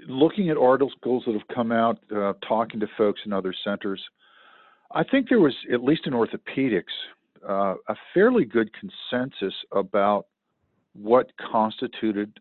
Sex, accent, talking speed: male, American, 145 wpm